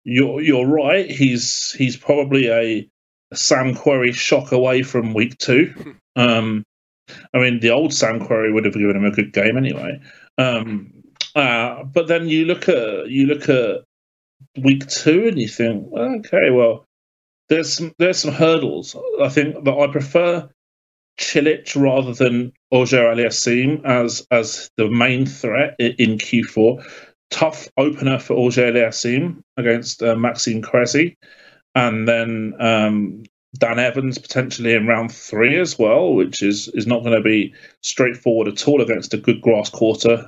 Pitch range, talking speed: 115-145 Hz, 155 wpm